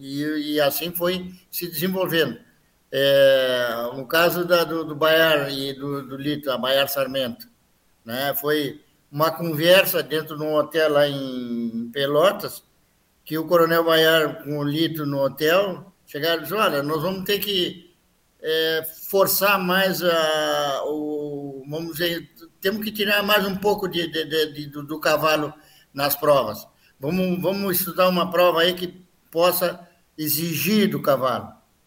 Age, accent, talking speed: 60-79, Brazilian, 130 wpm